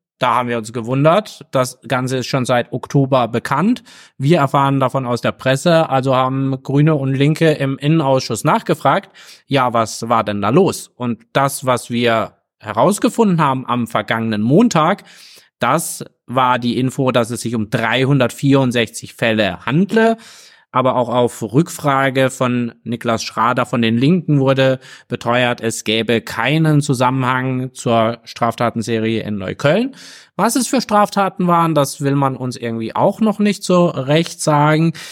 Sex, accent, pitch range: male, German, 120-160 Hz